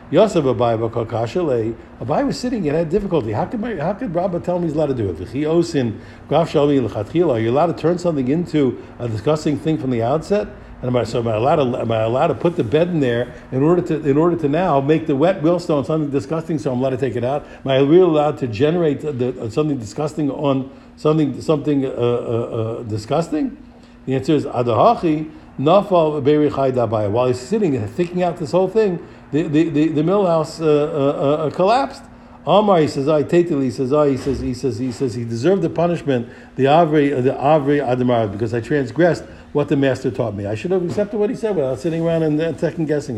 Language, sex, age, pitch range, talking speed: English, male, 60-79, 125-165 Hz, 205 wpm